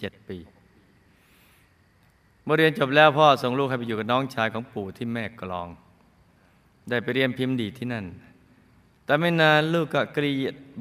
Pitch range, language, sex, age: 100-140 Hz, Thai, male, 20-39